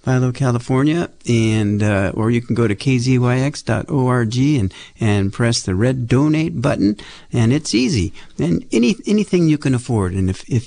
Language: English